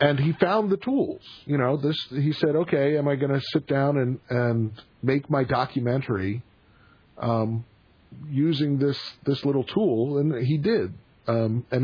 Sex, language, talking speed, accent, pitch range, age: male, English, 165 wpm, American, 105-135 Hz, 40-59